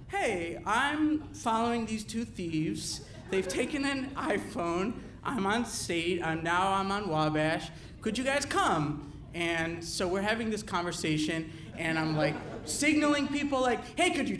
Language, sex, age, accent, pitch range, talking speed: English, male, 30-49, American, 165-250 Hz, 155 wpm